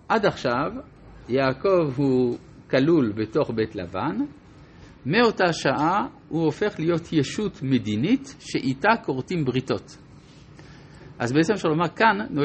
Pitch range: 115-165 Hz